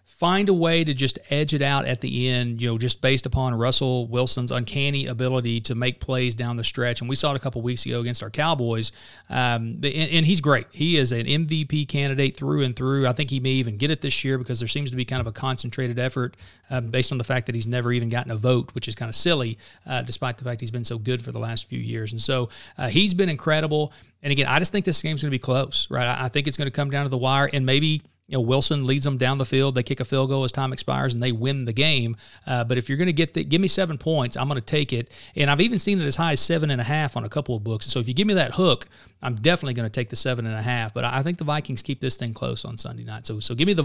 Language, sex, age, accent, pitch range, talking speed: English, male, 40-59, American, 120-150 Hz, 300 wpm